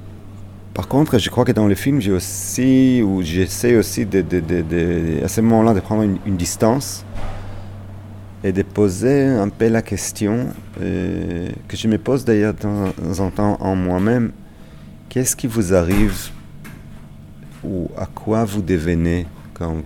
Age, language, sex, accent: 40-59, French, male, French